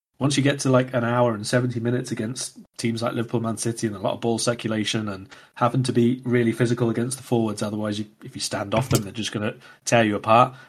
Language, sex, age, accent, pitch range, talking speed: English, male, 30-49, British, 100-120 Hz, 245 wpm